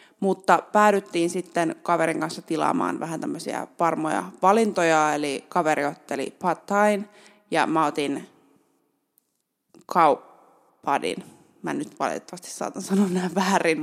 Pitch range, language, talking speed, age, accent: 160-205 Hz, Finnish, 115 wpm, 20-39, native